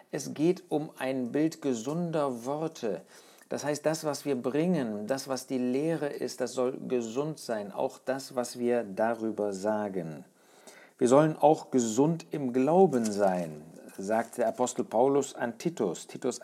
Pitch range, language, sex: 115-145 Hz, German, male